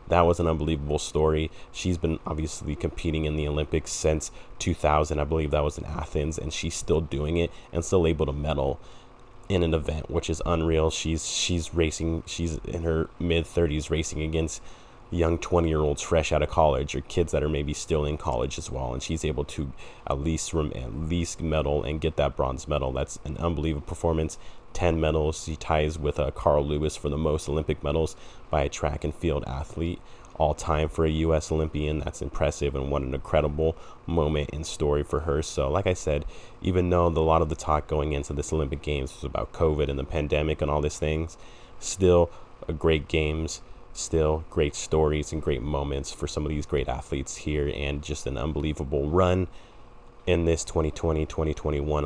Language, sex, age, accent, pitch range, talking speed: English, male, 30-49, American, 75-85 Hz, 195 wpm